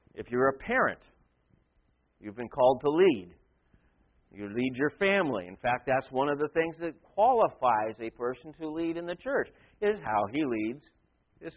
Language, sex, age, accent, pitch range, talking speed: English, male, 50-69, American, 125-180 Hz, 175 wpm